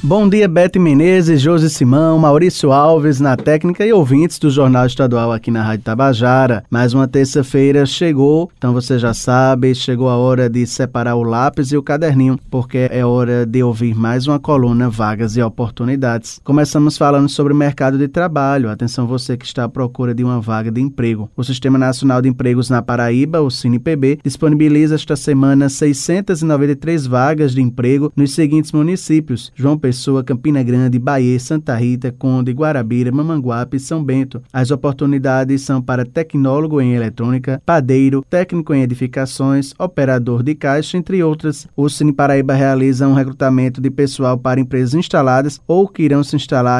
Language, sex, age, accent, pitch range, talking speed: Portuguese, male, 20-39, Brazilian, 125-150 Hz, 165 wpm